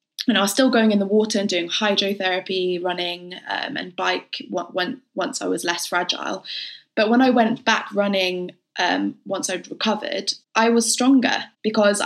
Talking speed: 170 wpm